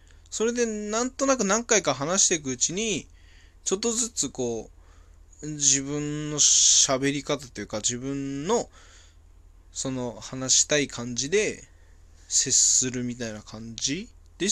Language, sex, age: Japanese, male, 20-39